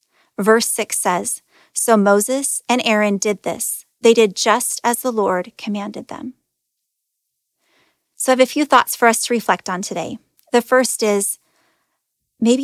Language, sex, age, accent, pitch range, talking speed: English, female, 30-49, American, 210-260 Hz, 155 wpm